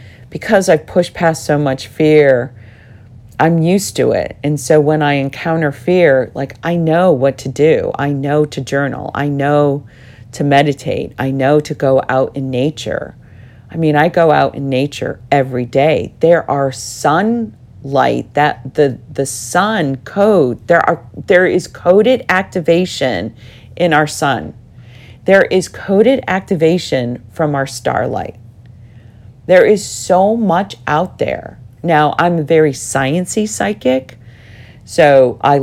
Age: 40-59